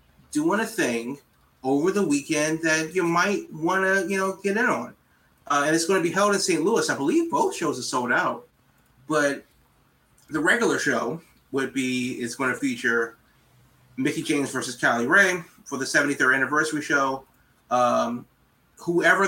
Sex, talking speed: male, 170 wpm